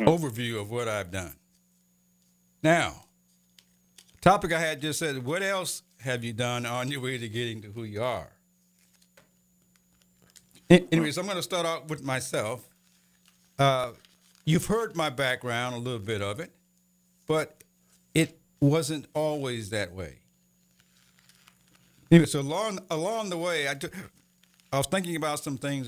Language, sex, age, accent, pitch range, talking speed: English, male, 60-79, American, 110-170 Hz, 145 wpm